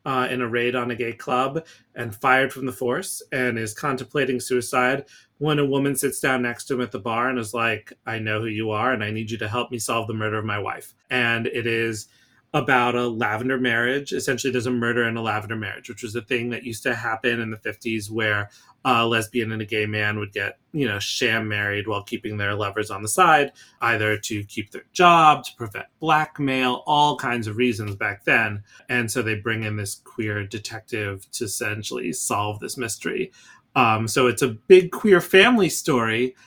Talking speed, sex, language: 215 wpm, male, English